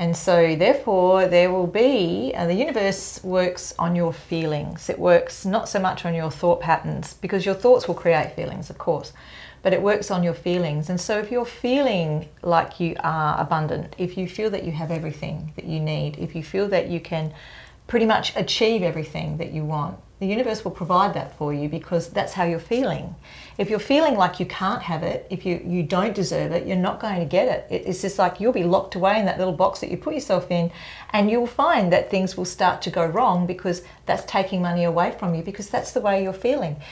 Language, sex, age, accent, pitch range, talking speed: English, female, 40-59, Australian, 170-210 Hz, 230 wpm